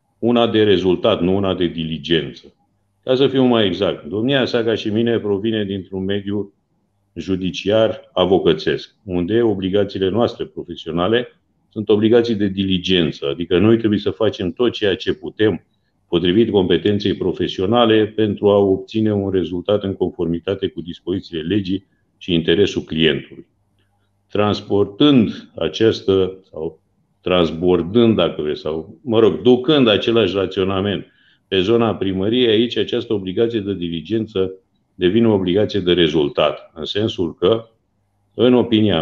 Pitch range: 90-110 Hz